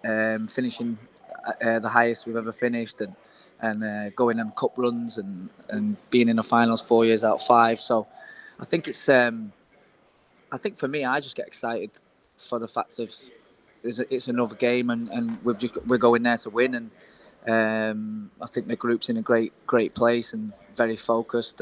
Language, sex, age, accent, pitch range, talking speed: English, male, 20-39, British, 115-125 Hz, 190 wpm